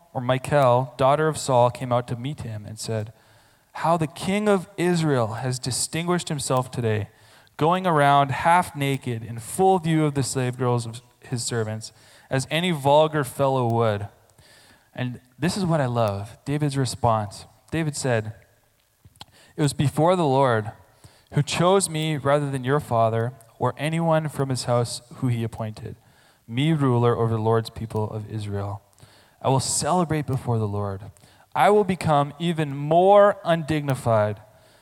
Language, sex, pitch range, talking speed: English, male, 115-155 Hz, 155 wpm